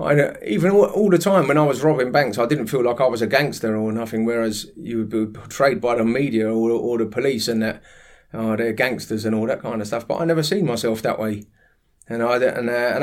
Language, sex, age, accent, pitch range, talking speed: English, male, 30-49, British, 110-140 Hz, 240 wpm